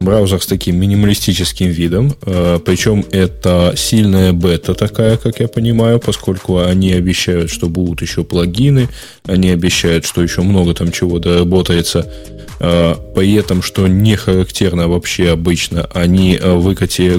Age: 10-29